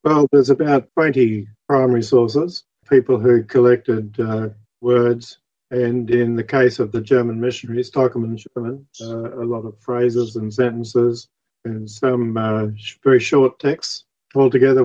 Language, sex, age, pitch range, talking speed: English, male, 50-69, 115-130 Hz, 140 wpm